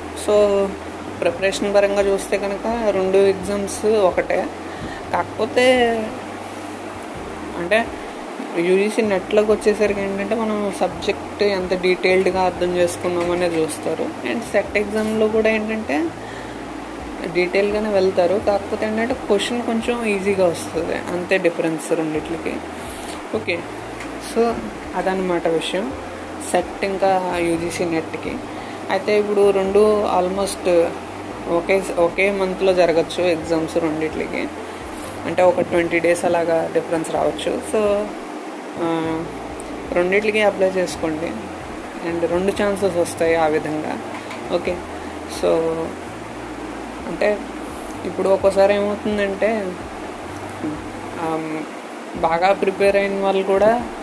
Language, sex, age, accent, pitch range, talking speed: Telugu, female, 20-39, native, 170-210 Hz, 90 wpm